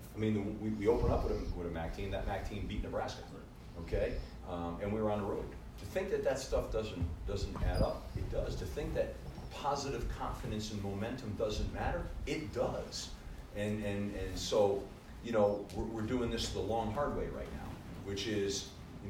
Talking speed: 205 wpm